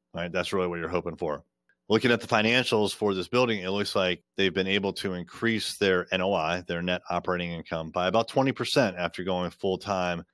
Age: 30-49